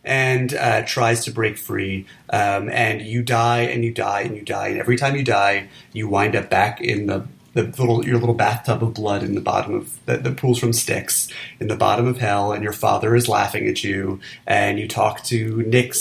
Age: 30-49